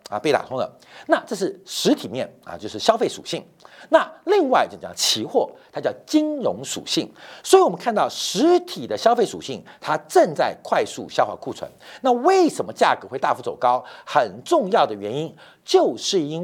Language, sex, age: Chinese, male, 50-69